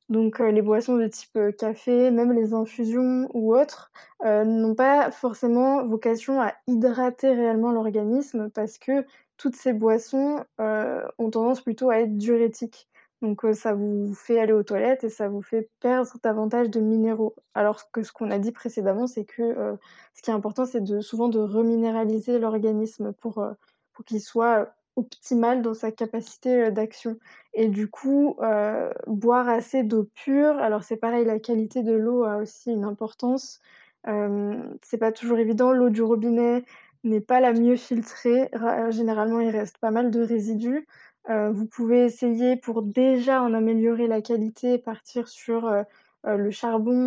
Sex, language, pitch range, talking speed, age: female, French, 220-250 Hz, 170 wpm, 20-39